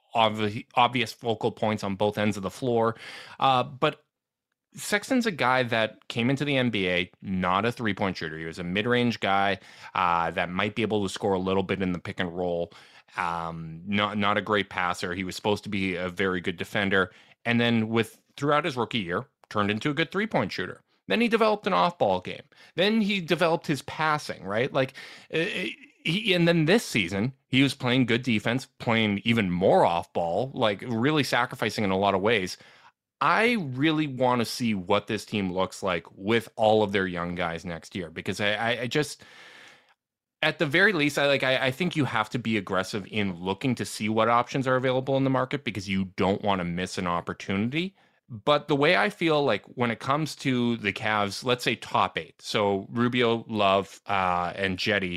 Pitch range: 100-135 Hz